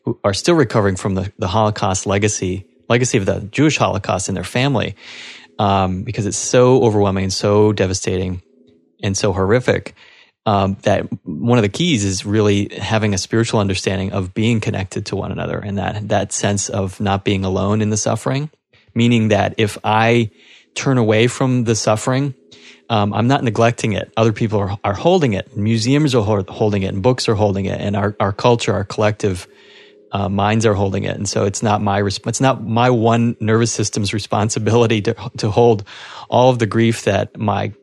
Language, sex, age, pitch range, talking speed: English, male, 30-49, 100-115 Hz, 190 wpm